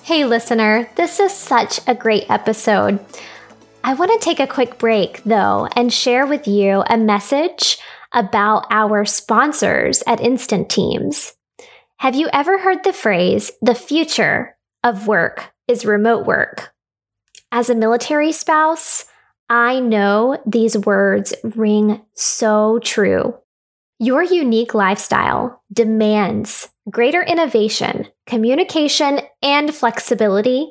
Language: English